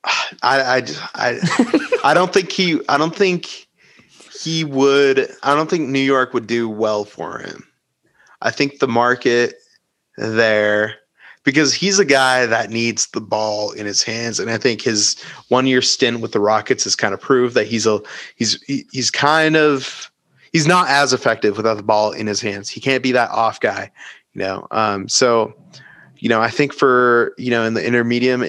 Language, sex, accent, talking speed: English, male, American, 185 wpm